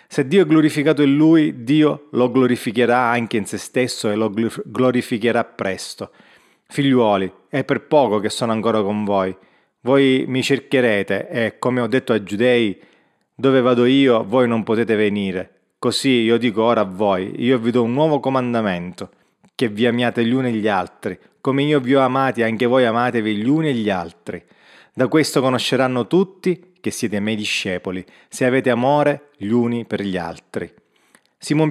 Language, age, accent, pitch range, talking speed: Italian, 30-49, native, 110-135 Hz, 175 wpm